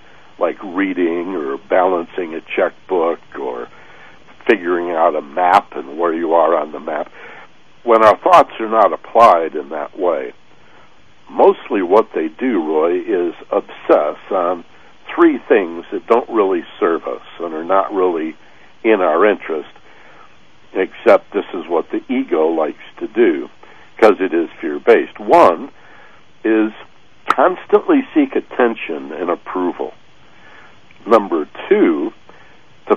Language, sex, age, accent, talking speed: English, male, 60-79, American, 130 wpm